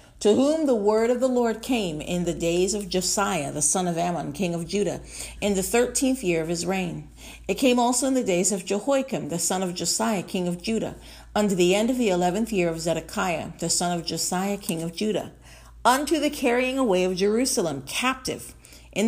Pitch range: 140-220 Hz